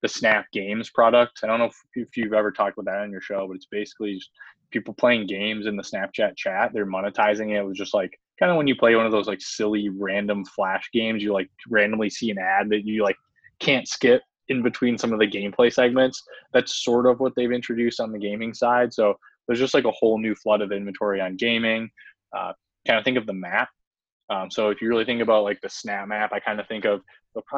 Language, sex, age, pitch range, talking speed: English, male, 20-39, 105-120 Hz, 240 wpm